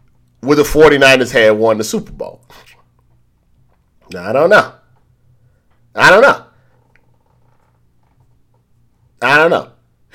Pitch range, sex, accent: 110-140 Hz, male, American